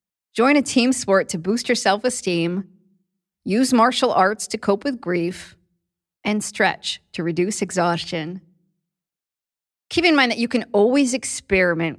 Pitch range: 175-230 Hz